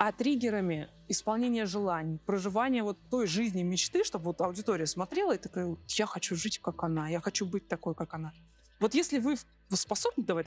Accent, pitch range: native, 170-220 Hz